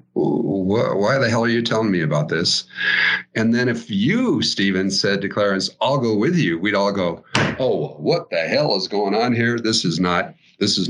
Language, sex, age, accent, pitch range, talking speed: English, male, 50-69, American, 100-150 Hz, 205 wpm